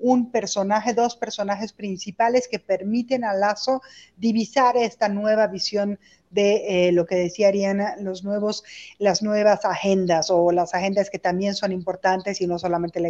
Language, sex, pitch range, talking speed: Spanish, female, 190-225 Hz, 160 wpm